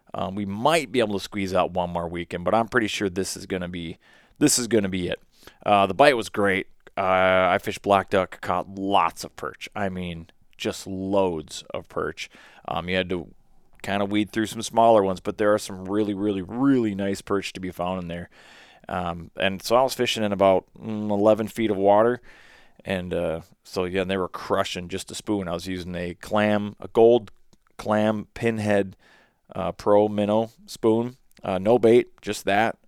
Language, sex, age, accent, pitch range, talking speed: English, male, 30-49, American, 90-110 Hz, 205 wpm